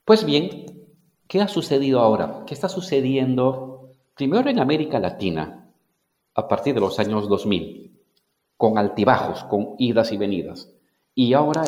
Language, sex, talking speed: Spanish, male, 140 wpm